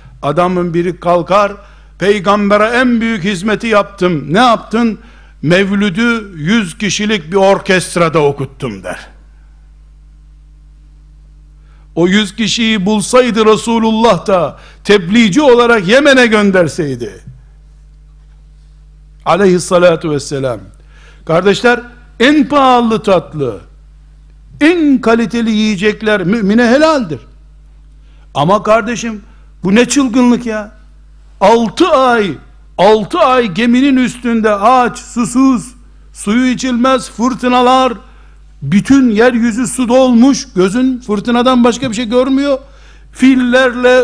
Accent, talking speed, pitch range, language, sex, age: native, 90 wpm, 180-250 Hz, Turkish, male, 60-79